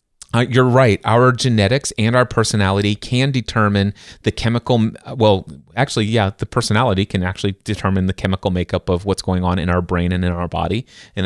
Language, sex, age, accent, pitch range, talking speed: English, male, 30-49, American, 100-125 Hz, 185 wpm